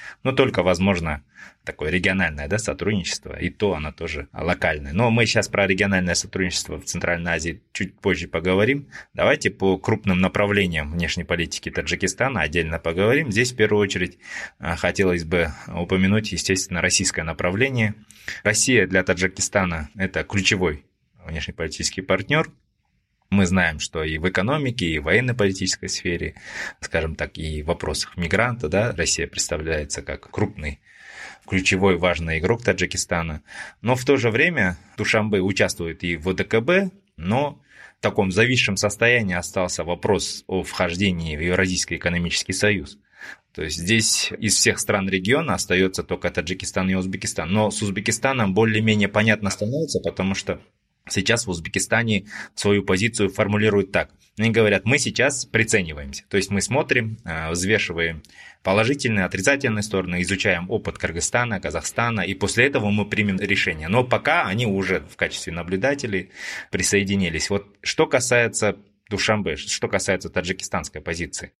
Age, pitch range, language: 20-39, 90-105 Hz, Russian